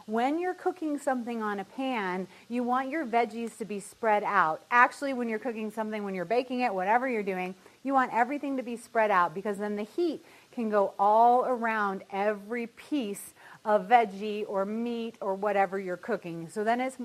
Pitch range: 195-255 Hz